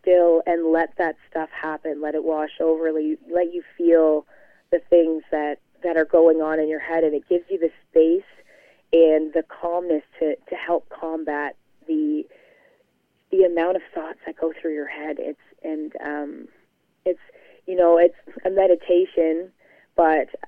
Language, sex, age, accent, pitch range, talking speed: English, female, 20-39, American, 155-165 Hz, 160 wpm